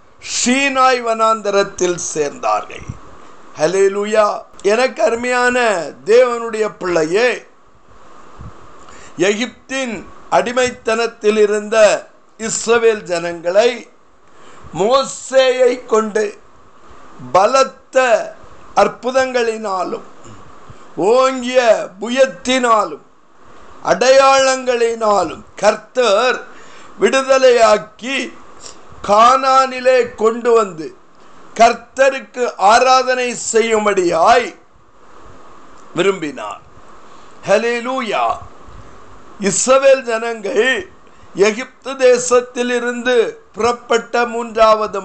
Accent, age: native, 50-69